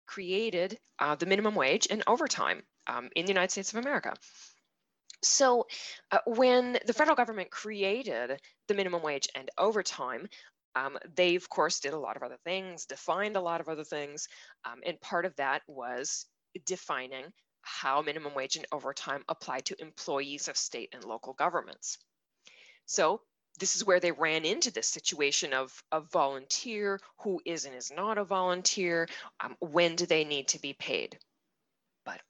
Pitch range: 150-200 Hz